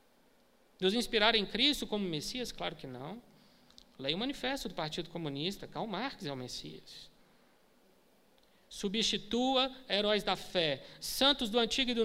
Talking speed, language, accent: 145 wpm, Portuguese, Brazilian